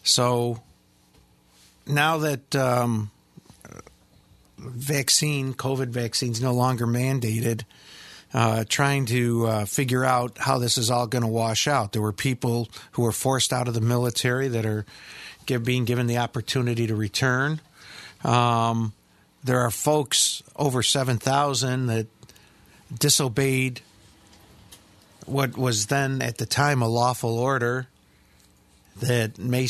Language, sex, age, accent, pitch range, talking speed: English, male, 50-69, American, 110-130 Hz, 125 wpm